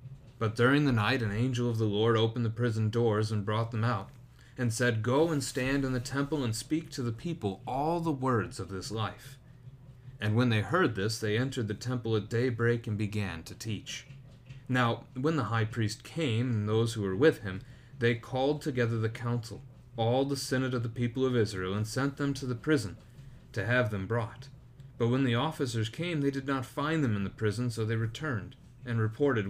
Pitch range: 110-135 Hz